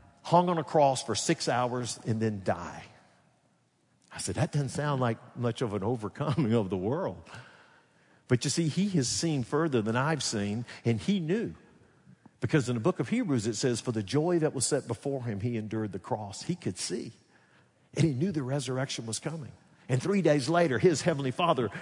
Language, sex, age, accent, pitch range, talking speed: English, male, 50-69, American, 110-155 Hz, 200 wpm